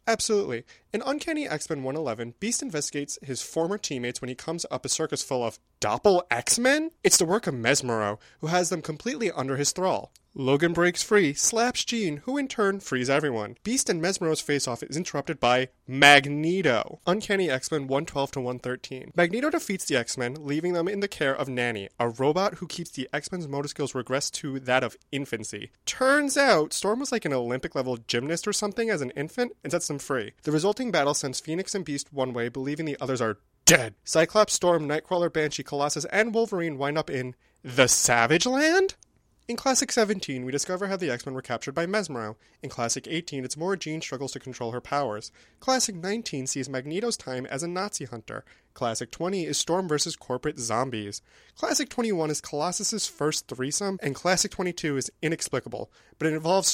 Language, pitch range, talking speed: English, 130-190 Hz, 185 wpm